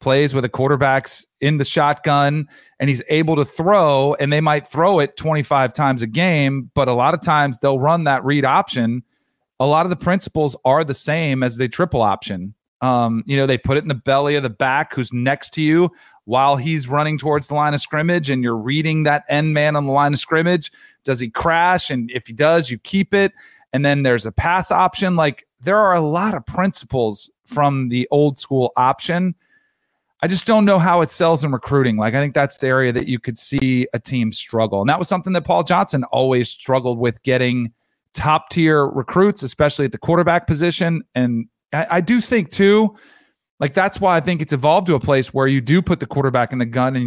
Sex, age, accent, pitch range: male, 30-49, American, 125-160 Hz